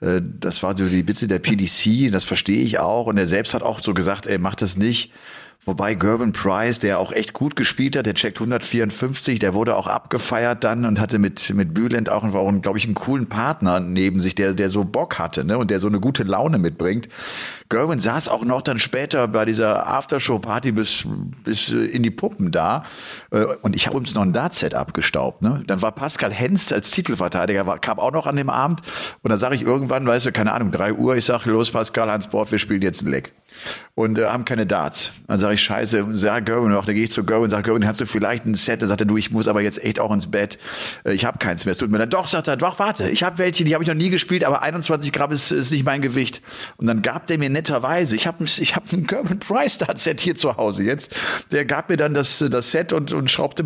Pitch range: 105-145 Hz